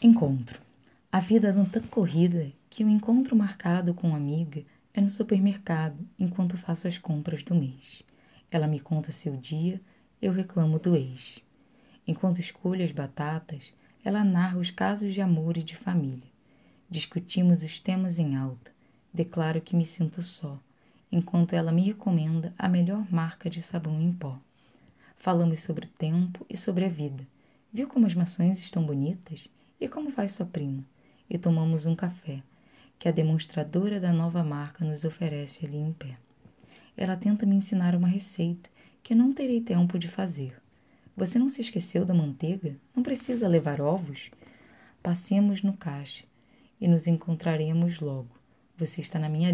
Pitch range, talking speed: 155-190 Hz, 160 wpm